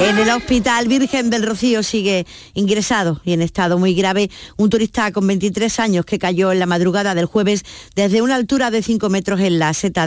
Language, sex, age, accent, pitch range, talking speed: Spanish, female, 50-69, Spanish, 180-240 Hz, 205 wpm